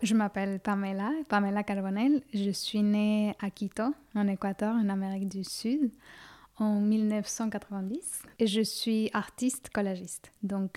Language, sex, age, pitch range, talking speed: French, female, 10-29, 200-225 Hz, 135 wpm